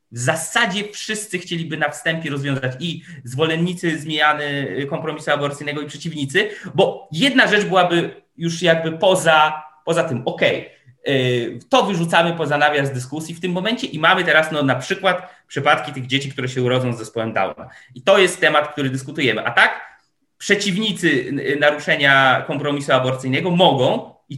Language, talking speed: Polish, 150 wpm